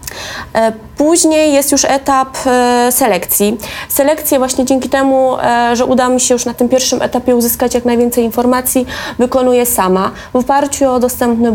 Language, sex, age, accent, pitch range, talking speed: Polish, female, 20-39, native, 225-270 Hz, 155 wpm